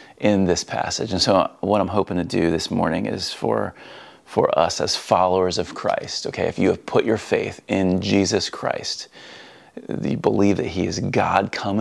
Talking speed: 190 wpm